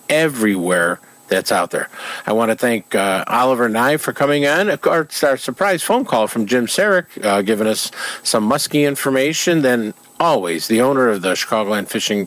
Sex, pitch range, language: male, 120-190 Hz, English